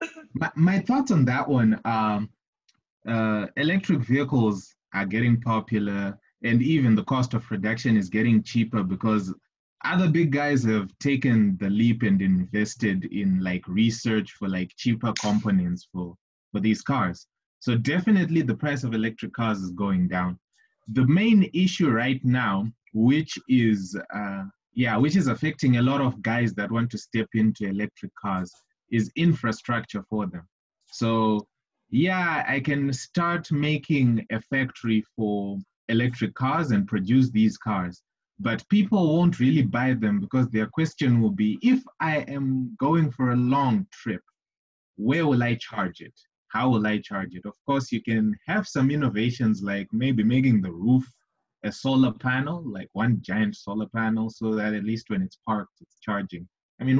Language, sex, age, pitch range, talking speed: English, male, 20-39, 105-140 Hz, 165 wpm